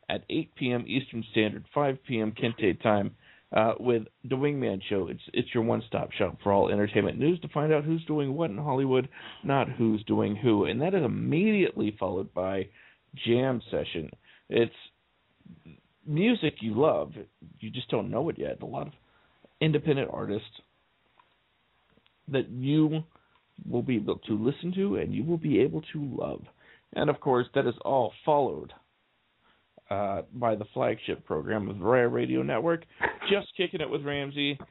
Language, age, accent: English, 40-59, American